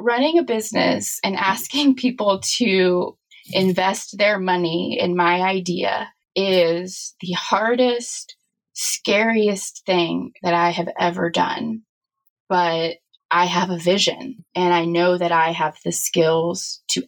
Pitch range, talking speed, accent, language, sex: 170-215 Hz, 130 wpm, American, English, female